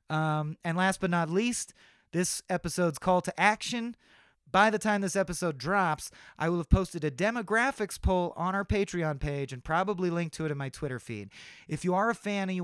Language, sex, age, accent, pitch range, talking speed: English, male, 30-49, American, 140-185 Hz, 210 wpm